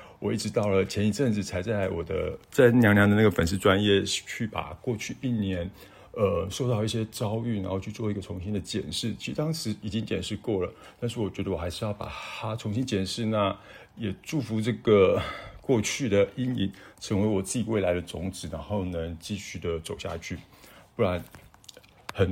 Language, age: Chinese, 50-69